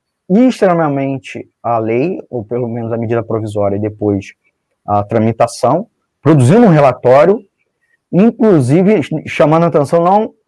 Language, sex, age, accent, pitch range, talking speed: Portuguese, male, 20-39, Brazilian, 135-200 Hz, 120 wpm